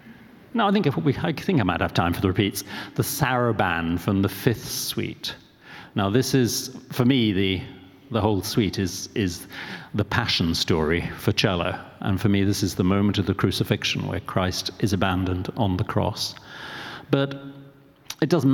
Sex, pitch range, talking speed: male, 100-125 Hz, 180 wpm